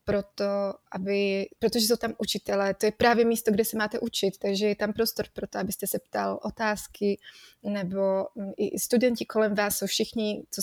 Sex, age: female, 20-39